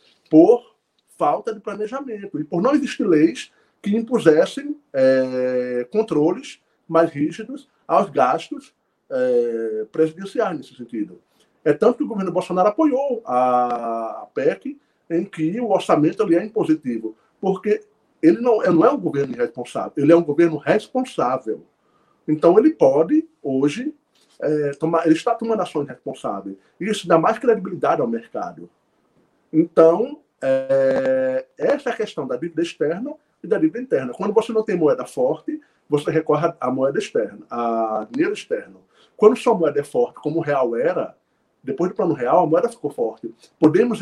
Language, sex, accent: Portuguese, male, Brazilian